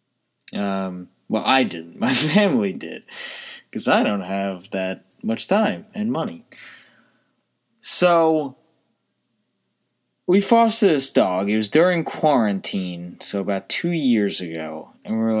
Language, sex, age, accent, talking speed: English, male, 20-39, American, 130 wpm